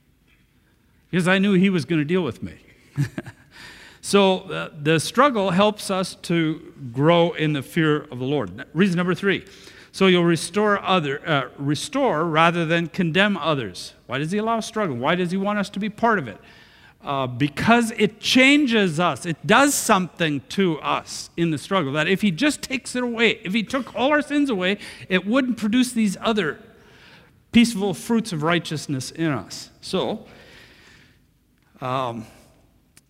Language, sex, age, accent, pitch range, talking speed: English, male, 50-69, American, 145-200 Hz, 160 wpm